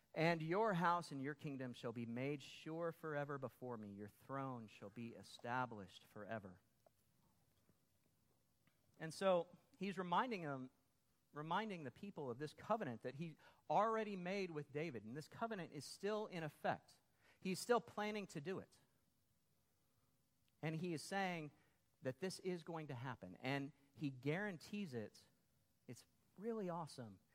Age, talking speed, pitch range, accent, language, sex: 40-59, 145 wpm, 120-170 Hz, American, English, male